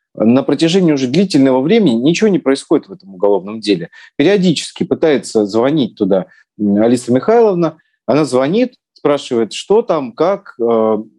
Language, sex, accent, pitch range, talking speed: Russian, male, native, 130-190 Hz, 130 wpm